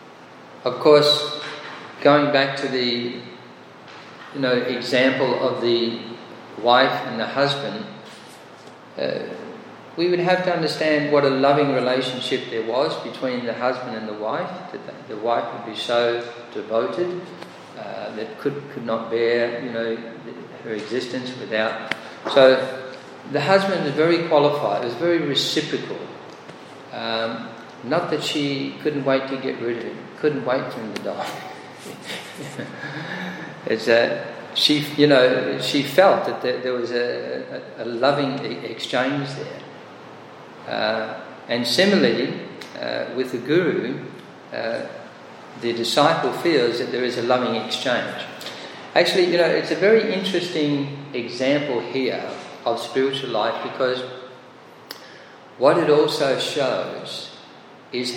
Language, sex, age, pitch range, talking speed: English, male, 40-59, 120-145 Hz, 135 wpm